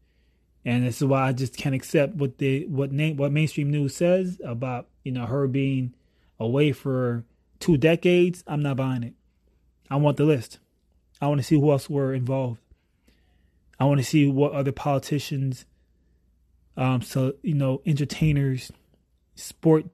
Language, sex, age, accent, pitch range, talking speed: English, male, 20-39, American, 90-145 Hz, 165 wpm